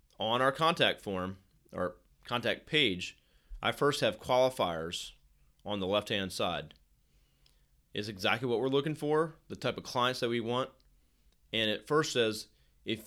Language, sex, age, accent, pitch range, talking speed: English, male, 30-49, American, 90-125 Hz, 150 wpm